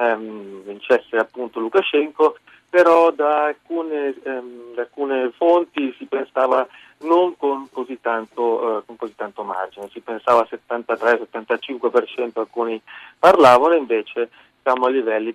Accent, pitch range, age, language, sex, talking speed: native, 115-135 Hz, 30-49, Italian, male, 115 wpm